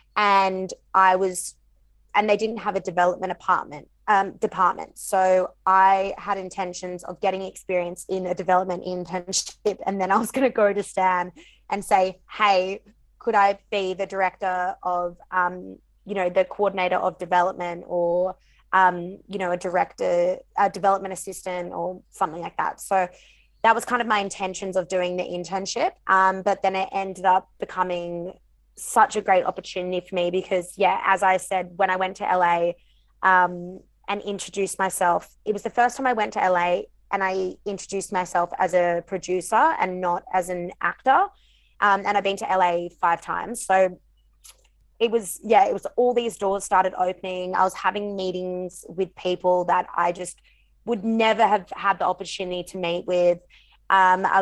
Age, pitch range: 20-39, 180-200 Hz